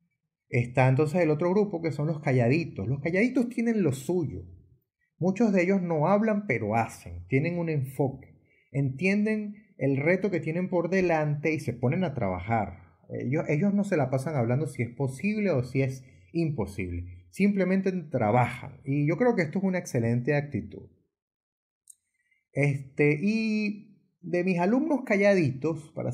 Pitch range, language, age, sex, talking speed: 120-185 Hz, English, 30-49, male, 155 wpm